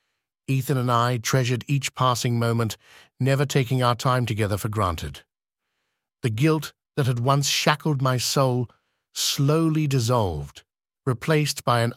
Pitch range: 115-145 Hz